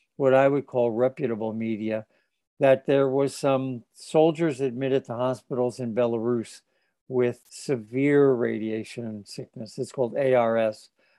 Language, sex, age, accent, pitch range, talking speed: English, male, 60-79, American, 125-150 Hz, 125 wpm